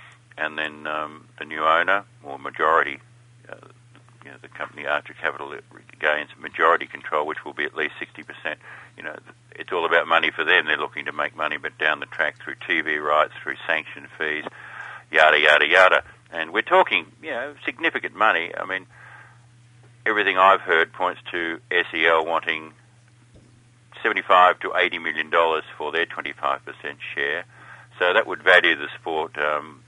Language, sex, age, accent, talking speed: English, male, 50-69, Australian, 165 wpm